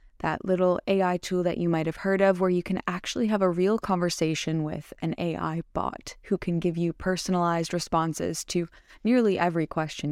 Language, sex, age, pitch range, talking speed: English, female, 20-39, 165-205 Hz, 190 wpm